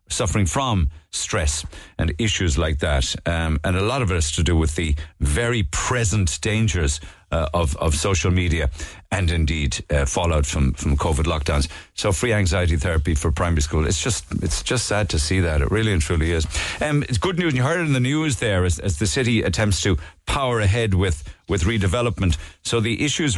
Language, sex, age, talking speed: English, male, 50-69, 205 wpm